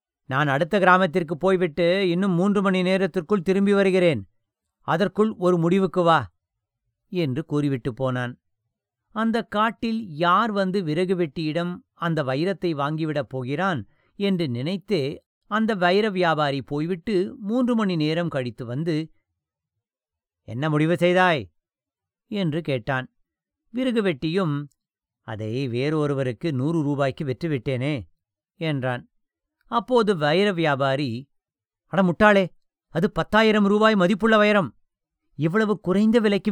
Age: 50-69